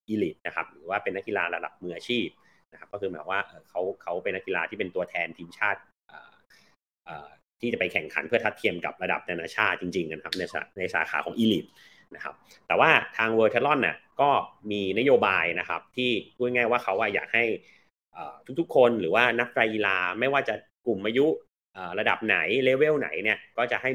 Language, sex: Thai, male